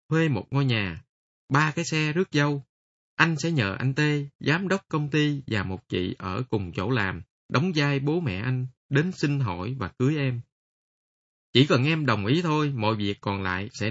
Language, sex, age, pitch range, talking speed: Vietnamese, male, 20-39, 110-150 Hz, 205 wpm